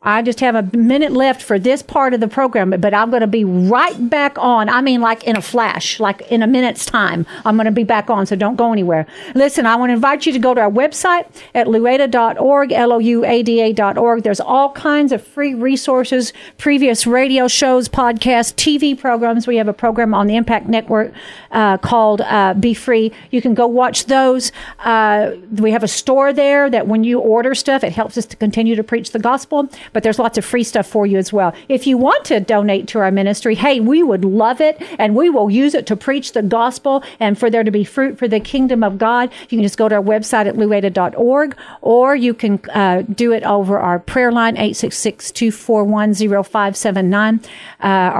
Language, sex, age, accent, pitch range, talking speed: English, female, 50-69, American, 210-255 Hz, 215 wpm